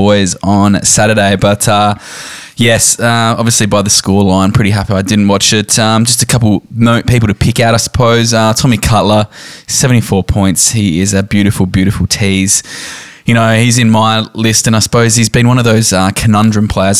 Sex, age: male, 10-29